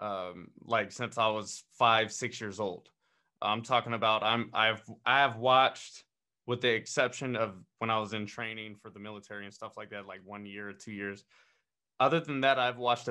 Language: English